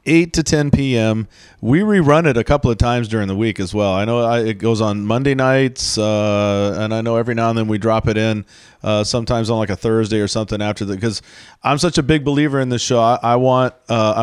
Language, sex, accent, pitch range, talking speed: English, male, American, 110-135 Hz, 250 wpm